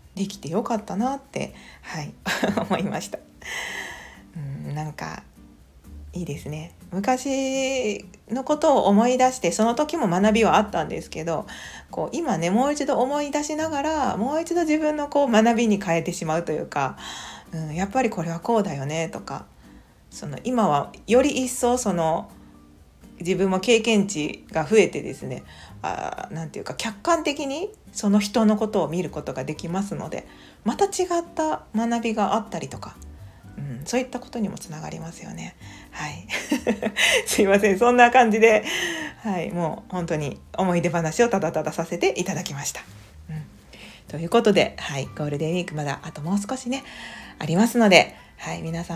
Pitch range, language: 160-245 Hz, Japanese